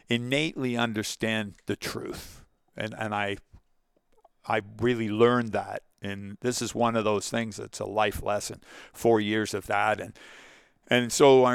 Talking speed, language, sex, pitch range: 155 wpm, English, male, 105-120 Hz